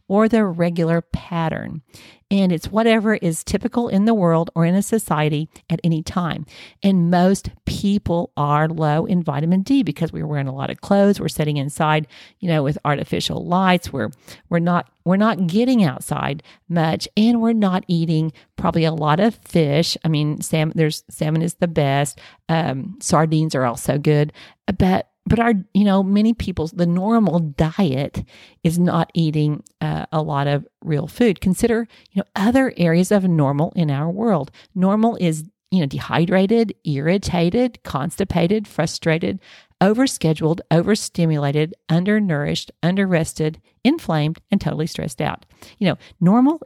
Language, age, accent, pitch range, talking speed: English, 50-69, American, 155-195 Hz, 155 wpm